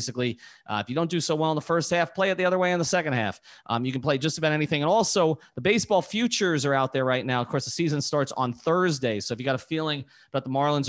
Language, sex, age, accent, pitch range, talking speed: English, male, 30-49, American, 120-160 Hz, 290 wpm